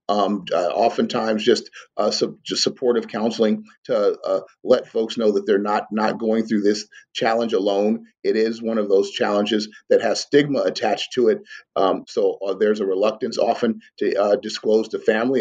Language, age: English, 40-59